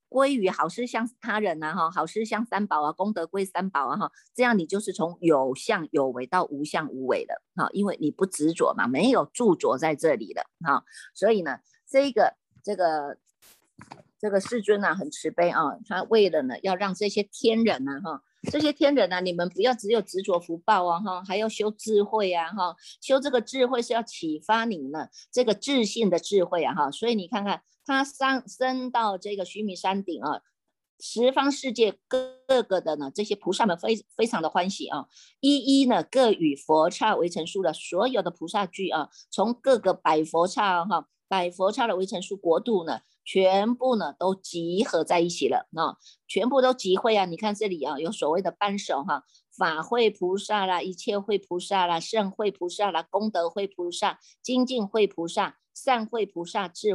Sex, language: female, Chinese